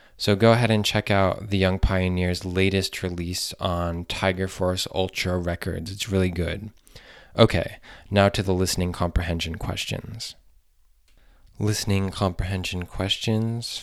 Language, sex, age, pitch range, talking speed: English, male, 20-39, 85-95 Hz, 125 wpm